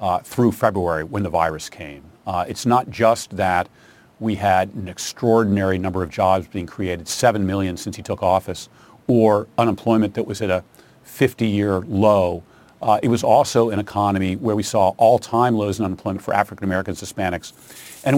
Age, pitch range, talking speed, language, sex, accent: 40-59, 95-115 Hz, 170 wpm, English, male, American